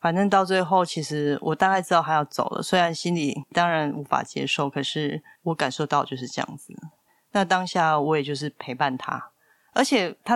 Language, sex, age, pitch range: Chinese, female, 30-49, 150-185 Hz